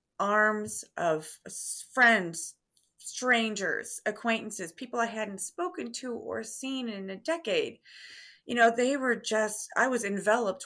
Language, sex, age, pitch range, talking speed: English, female, 30-49, 180-230 Hz, 130 wpm